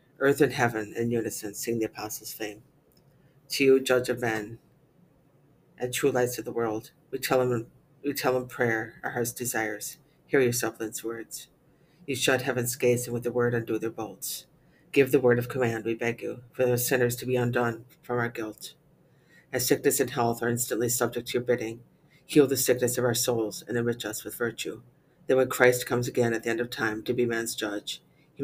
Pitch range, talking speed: 115-130 Hz, 200 wpm